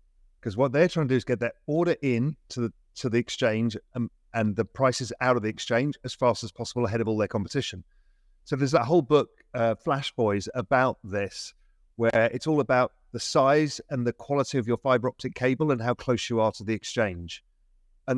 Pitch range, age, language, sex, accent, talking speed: 100-145 Hz, 40-59, English, male, British, 220 wpm